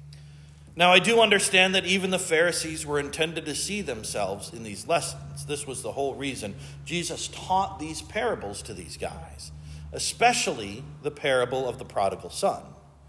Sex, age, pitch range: male, 40-59, 130-180 Hz